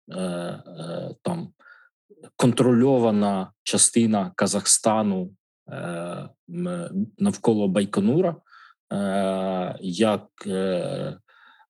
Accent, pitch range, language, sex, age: native, 95-130 Hz, Ukrainian, male, 20-39